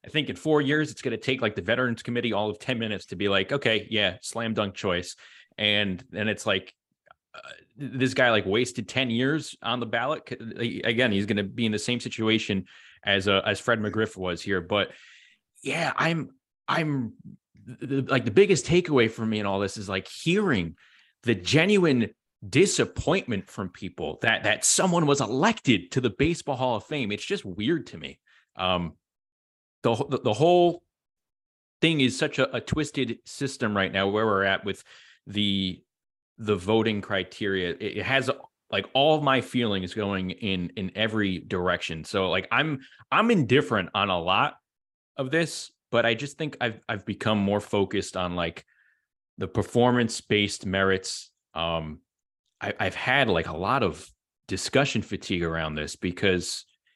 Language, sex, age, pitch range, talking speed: English, male, 30-49, 95-130 Hz, 175 wpm